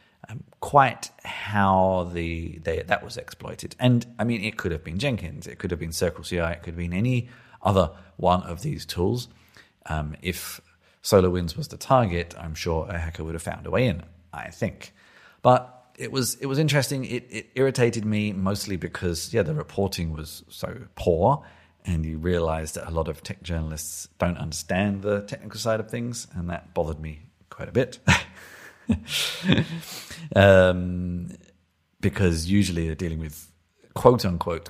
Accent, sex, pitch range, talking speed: British, male, 80-105 Hz, 170 wpm